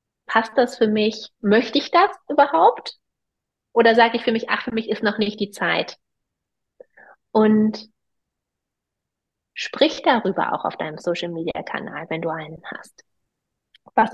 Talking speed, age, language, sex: 140 wpm, 30-49, German, female